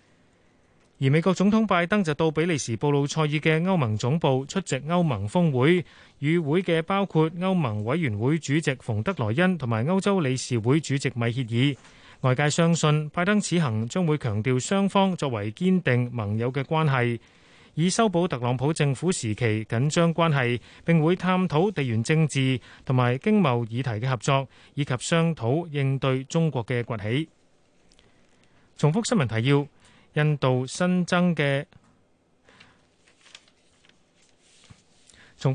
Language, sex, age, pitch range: Chinese, male, 30-49, 120-165 Hz